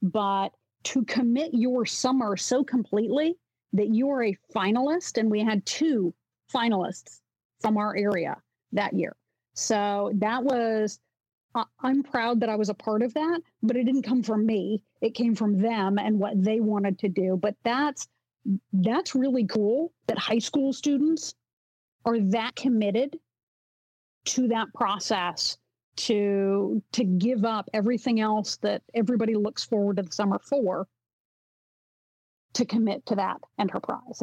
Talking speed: 145 wpm